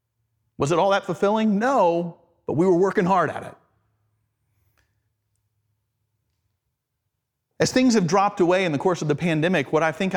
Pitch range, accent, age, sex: 120-170 Hz, American, 30-49, male